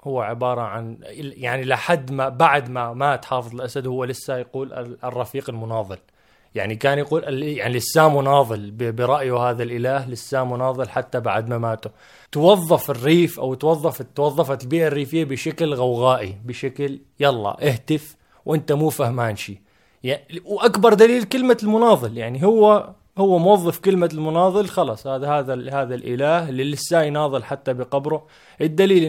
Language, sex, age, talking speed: Arabic, male, 20-39, 140 wpm